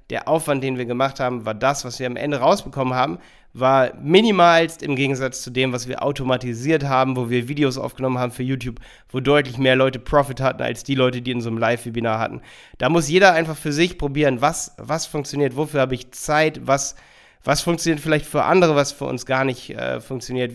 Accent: German